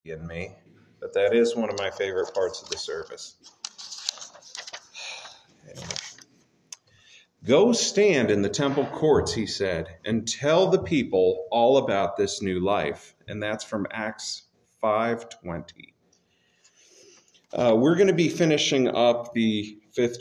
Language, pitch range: English, 100-155 Hz